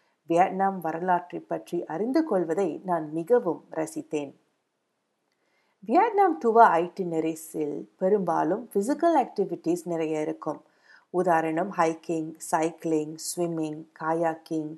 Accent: native